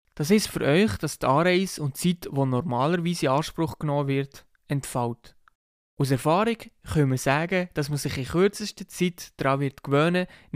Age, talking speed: 20-39, 170 wpm